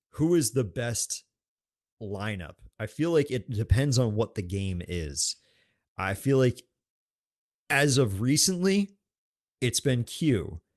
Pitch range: 105-135 Hz